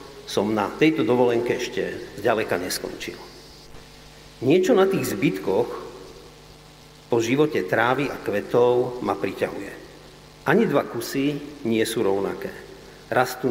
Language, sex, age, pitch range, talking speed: Slovak, male, 50-69, 120-145 Hz, 110 wpm